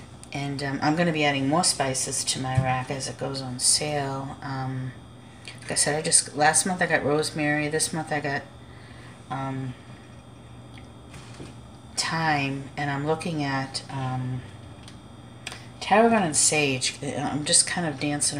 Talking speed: 155 wpm